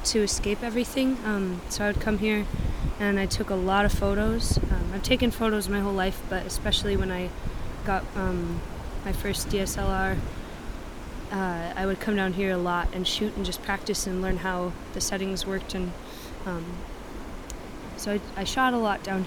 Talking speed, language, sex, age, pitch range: 185 wpm, English, female, 20-39, 185-210 Hz